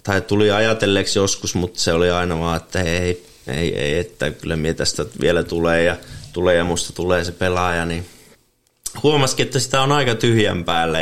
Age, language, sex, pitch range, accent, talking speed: 20-39, Finnish, male, 85-110 Hz, native, 175 wpm